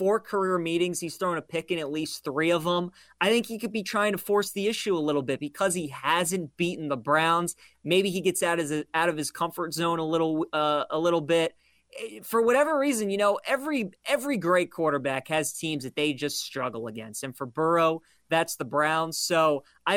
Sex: male